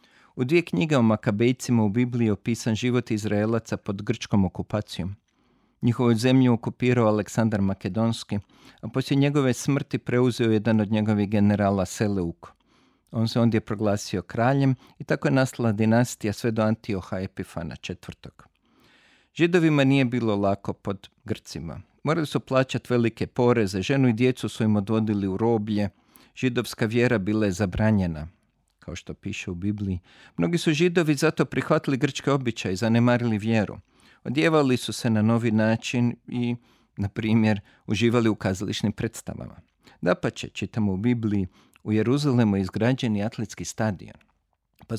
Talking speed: 145 wpm